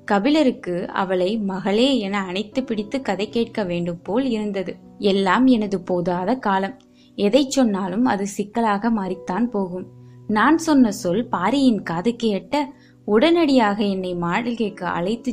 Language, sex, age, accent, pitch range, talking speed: Tamil, female, 20-39, native, 185-235 Hz, 115 wpm